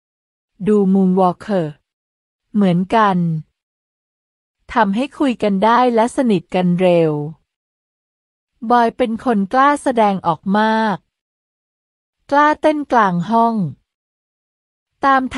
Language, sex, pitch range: Thai, female, 185-250 Hz